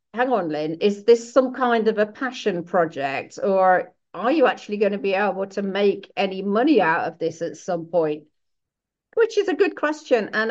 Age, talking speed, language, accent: 50-69, 200 wpm, English, British